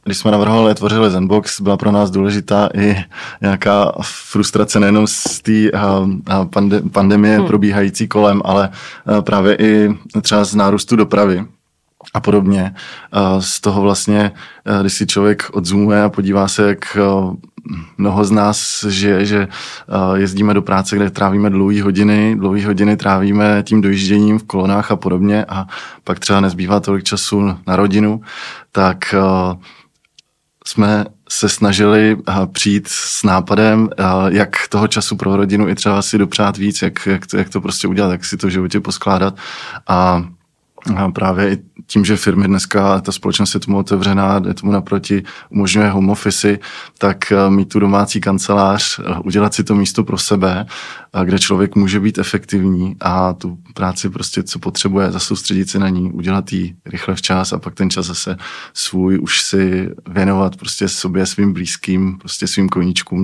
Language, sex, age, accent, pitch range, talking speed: Czech, male, 20-39, native, 95-105 Hz, 150 wpm